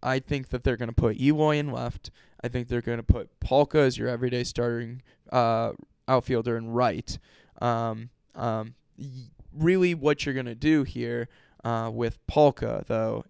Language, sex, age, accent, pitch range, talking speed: English, male, 10-29, American, 115-135 Hz, 175 wpm